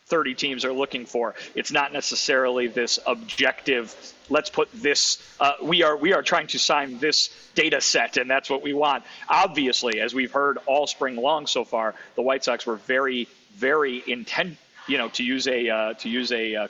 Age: 40-59